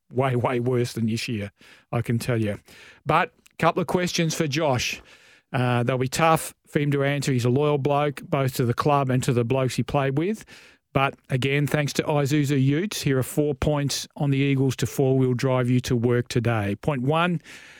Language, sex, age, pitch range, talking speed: English, male, 40-59, 125-145 Hz, 210 wpm